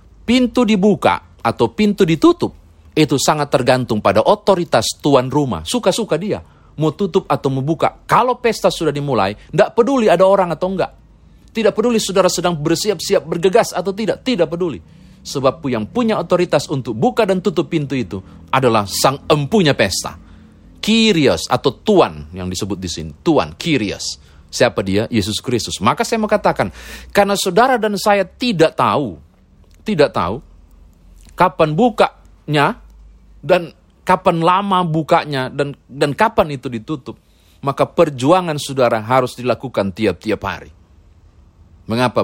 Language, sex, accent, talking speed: Indonesian, male, native, 135 wpm